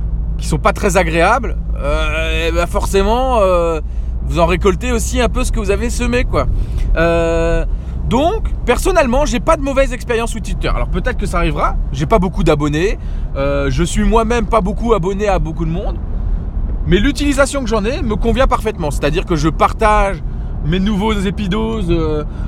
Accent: French